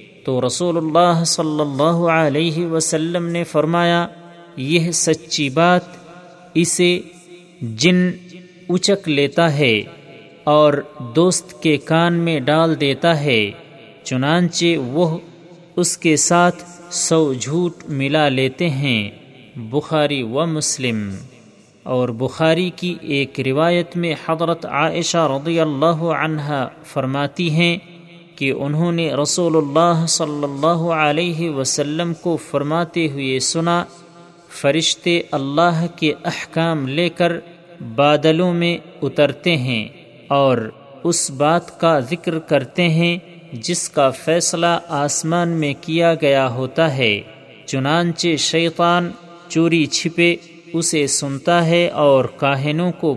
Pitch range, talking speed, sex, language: 145-170 Hz, 115 wpm, male, Urdu